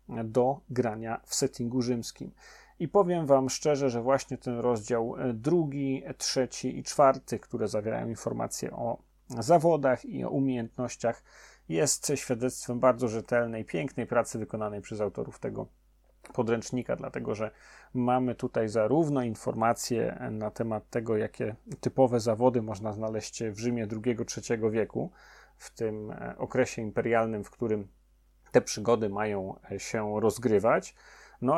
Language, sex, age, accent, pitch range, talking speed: Polish, male, 30-49, native, 110-130 Hz, 125 wpm